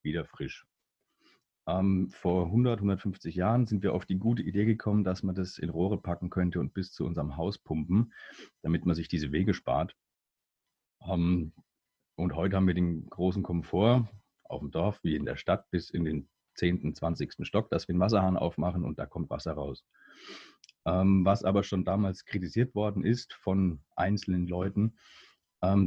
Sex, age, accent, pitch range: male, 40-59, German, 85-100 Hz